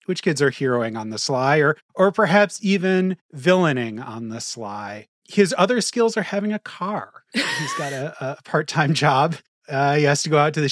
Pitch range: 135-200 Hz